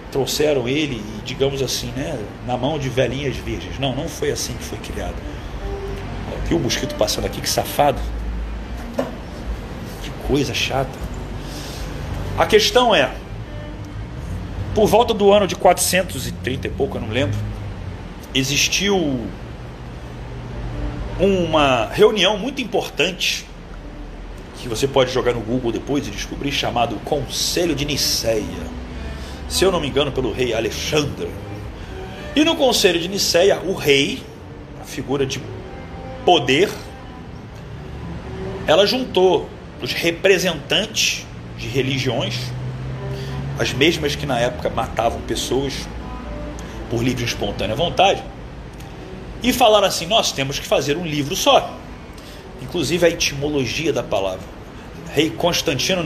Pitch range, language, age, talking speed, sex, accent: 100-165 Hz, Portuguese, 40-59, 125 wpm, male, Brazilian